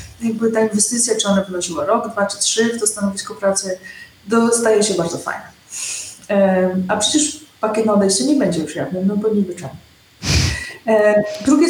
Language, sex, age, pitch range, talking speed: Polish, female, 30-49, 195-250 Hz, 165 wpm